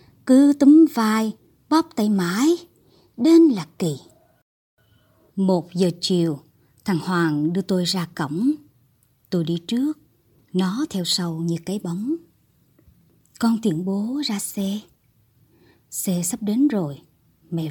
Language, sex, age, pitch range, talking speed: Vietnamese, male, 20-39, 165-245 Hz, 125 wpm